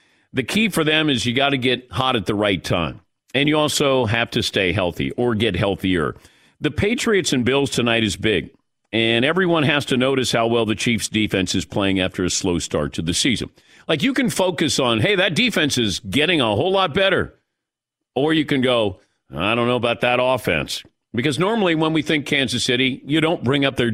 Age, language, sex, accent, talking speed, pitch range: 50-69, English, male, American, 215 wpm, 105-145 Hz